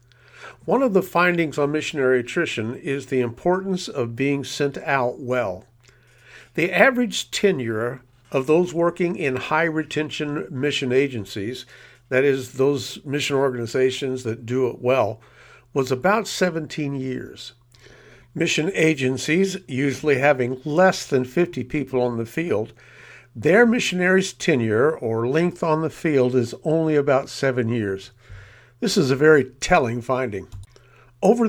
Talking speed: 135 wpm